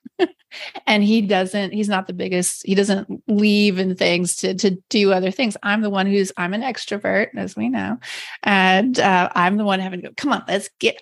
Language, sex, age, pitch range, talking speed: English, female, 30-49, 175-200 Hz, 210 wpm